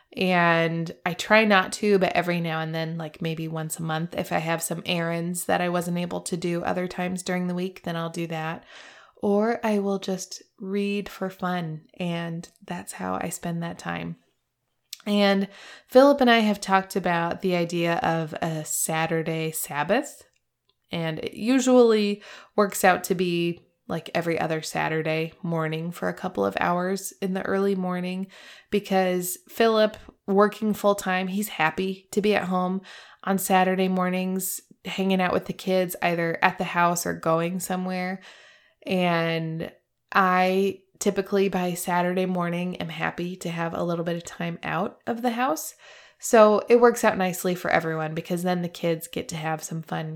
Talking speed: 170 wpm